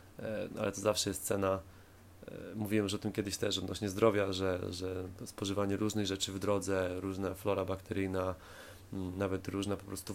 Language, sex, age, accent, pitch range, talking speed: Polish, male, 20-39, native, 95-105 Hz, 160 wpm